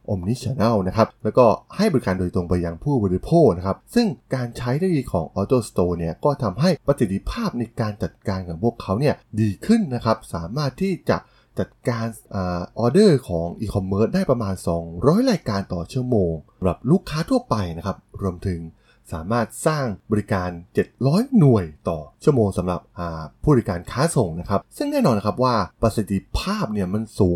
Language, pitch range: Thai, 95-130 Hz